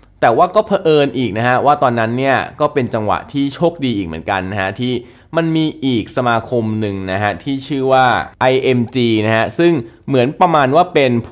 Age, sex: 20-39, male